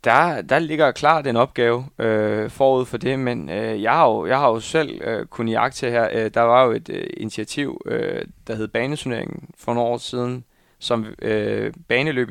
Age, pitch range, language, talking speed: 20-39, 110-130 Hz, Danish, 155 wpm